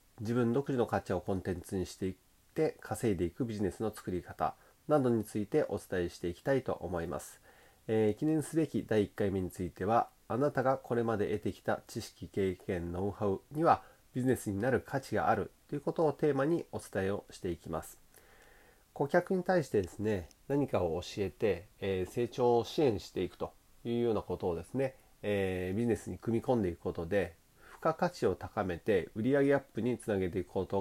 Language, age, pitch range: Japanese, 30-49, 95-130 Hz